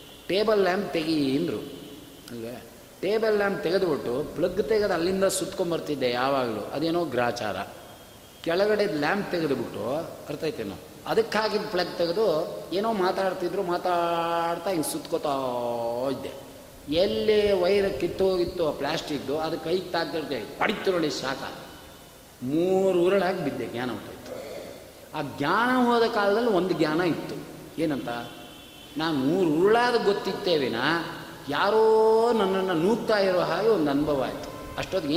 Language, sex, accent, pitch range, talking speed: Kannada, male, native, 140-195 Hz, 105 wpm